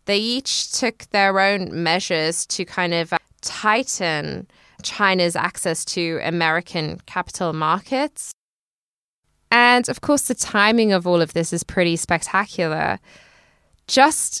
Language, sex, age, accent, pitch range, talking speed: English, female, 20-39, British, 175-210 Hz, 120 wpm